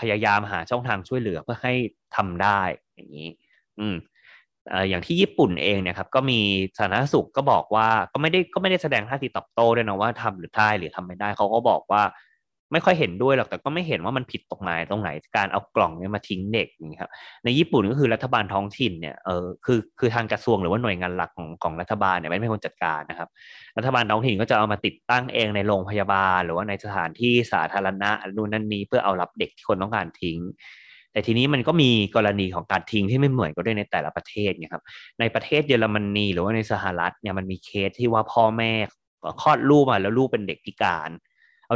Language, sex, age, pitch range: Thai, male, 20-39, 95-120 Hz